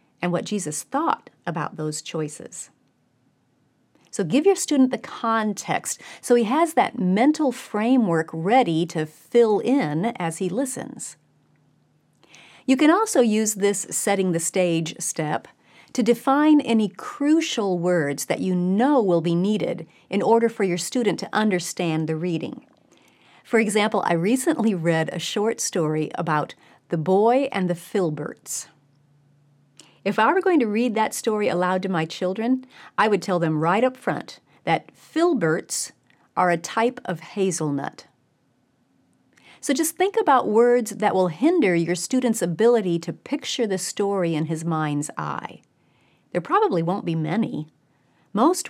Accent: American